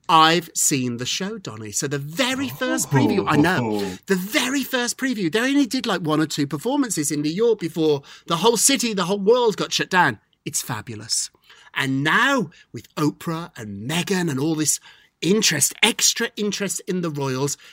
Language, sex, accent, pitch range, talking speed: English, male, British, 145-205 Hz, 185 wpm